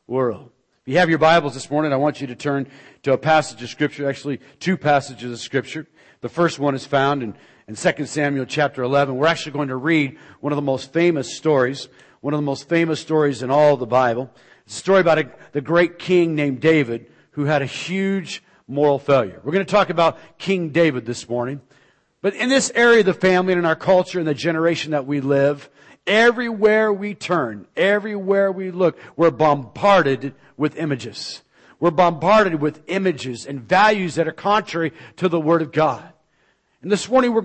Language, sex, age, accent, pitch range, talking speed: English, male, 40-59, American, 140-185 Hz, 200 wpm